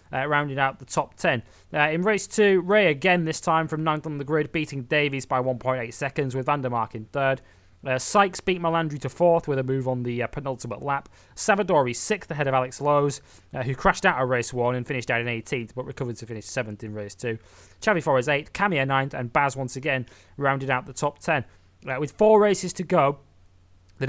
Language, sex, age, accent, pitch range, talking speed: English, male, 20-39, British, 125-155 Hz, 220 wpm